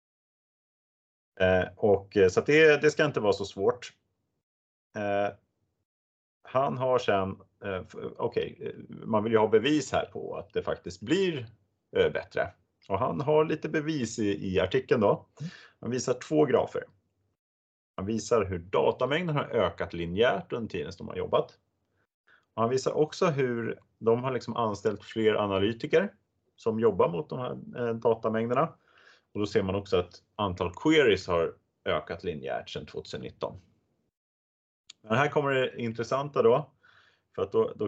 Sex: male